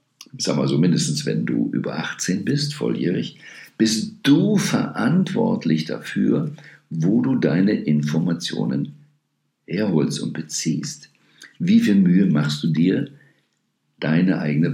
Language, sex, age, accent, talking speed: German, male, 50-69, German, 120 wpm